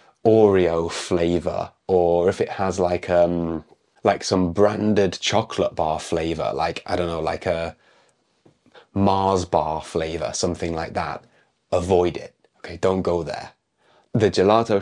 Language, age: English, 20-39